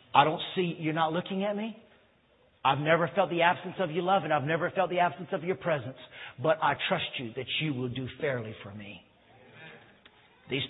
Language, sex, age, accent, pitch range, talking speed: English, male, 50-69, American, 130-195 Hz, 210 wpm